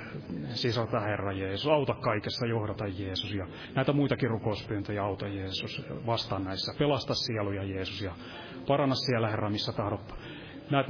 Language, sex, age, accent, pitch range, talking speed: Finnish, male, 30-49, native, 100-125 Hz, 140 wpm